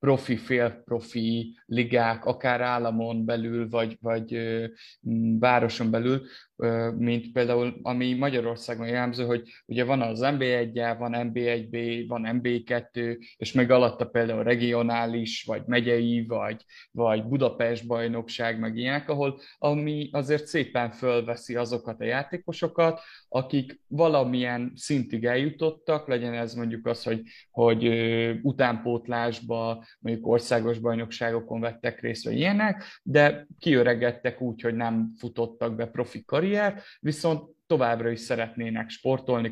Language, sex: Hungarian, male